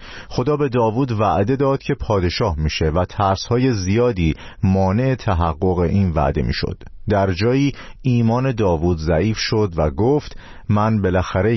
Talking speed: 135 wpm